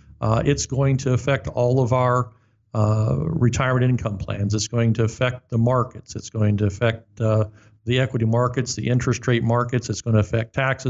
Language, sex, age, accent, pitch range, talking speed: English, male, 50-69, American, 110-130 Hz, 195 wpm